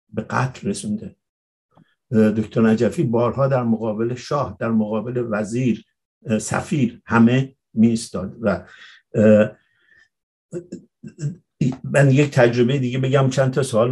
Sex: male